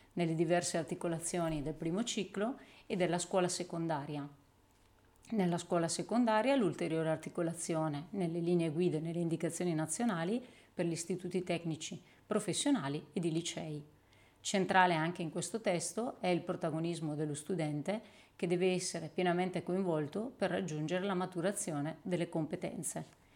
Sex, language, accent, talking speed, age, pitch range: female, Italian, native, 130 wpm, 30-49, 160-195 Hz